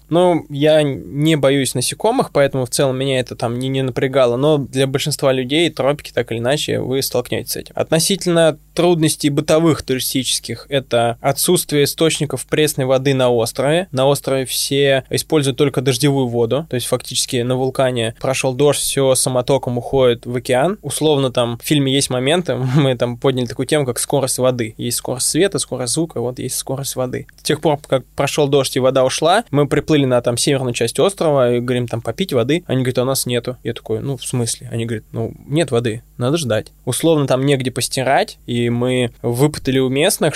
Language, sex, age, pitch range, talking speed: Russian, male, 20-39, 125-145 Hz, 190 wpm